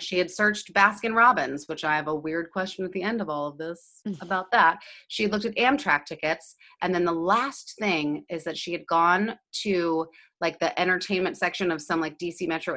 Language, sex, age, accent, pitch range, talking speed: English, female, 30-49, American, 155-195 Hz, 210 wpm